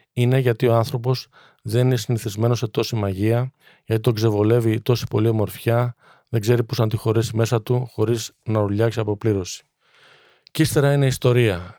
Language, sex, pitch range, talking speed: Greek, male, 110-125 Hz, 160 wpm